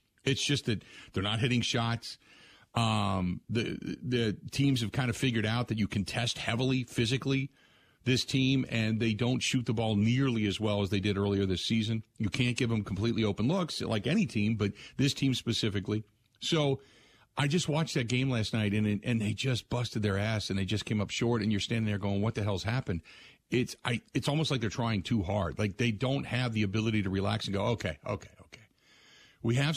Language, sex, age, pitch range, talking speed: English, male, 50-69, 100-125 Hz, 215 wpm